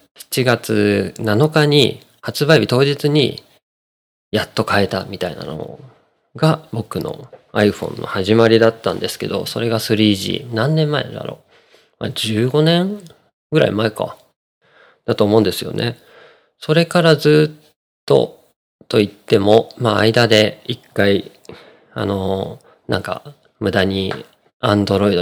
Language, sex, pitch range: Japanese, male, 105-145 Hz